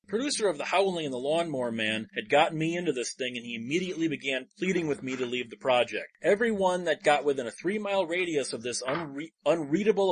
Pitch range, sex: 135-170 Hz, male